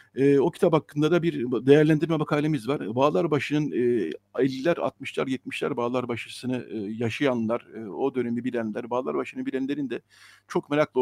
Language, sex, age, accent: Turkish, male, 60-79, native